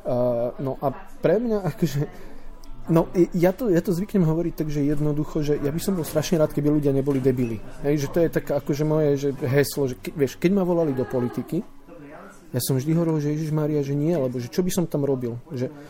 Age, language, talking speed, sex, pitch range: 40-59, Slovak, 225 wpm, male, 135-175 Hz